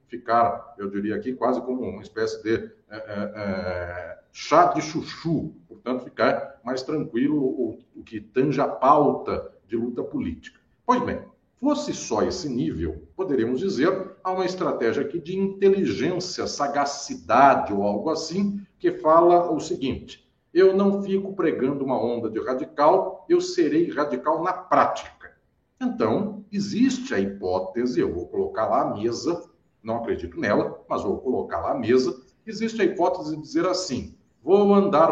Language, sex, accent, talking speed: Portuguese, male, Brazilian, 150 wpm